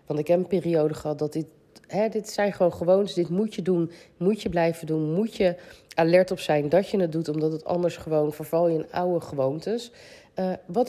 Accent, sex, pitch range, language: Dutch, female, 155-195 Hz, Dutch